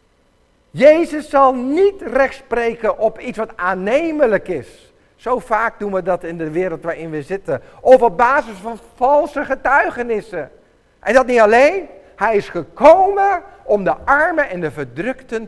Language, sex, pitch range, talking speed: Dutch, male, 205-300 Hz, 150 wpm